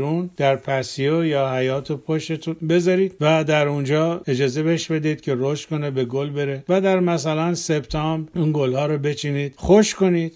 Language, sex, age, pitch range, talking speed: Persian, male, 50-69, 140-175 Hz, 160 wpm